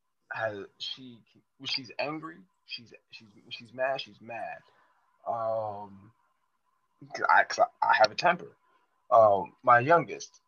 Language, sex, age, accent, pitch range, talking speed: English, male, 20-39, American, 110-140 Hz, 125 wpm